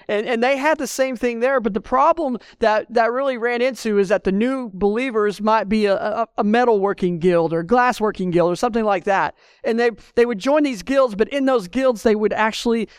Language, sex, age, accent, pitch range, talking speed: English, male, 40-59, American, 190-235 Hz, 225 wpm